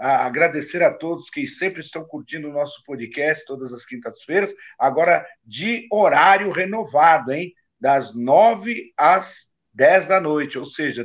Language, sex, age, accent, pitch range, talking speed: Portuguese, male, 50-69, Brazilian, 135-180 Hz, 140 wpm